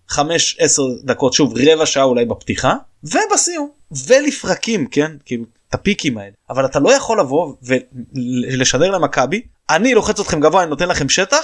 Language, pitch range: Hebrew, 135-220 Hz